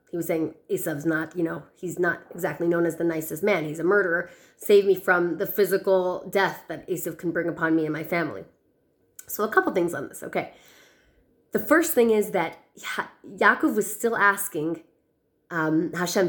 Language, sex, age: English, female, 30-49